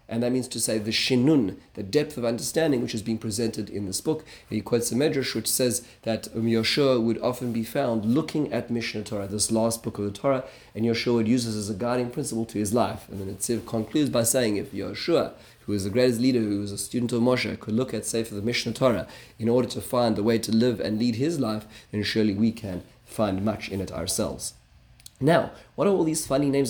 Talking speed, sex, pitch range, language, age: 240 wpm, male, 110-130 Hz, English, 30-49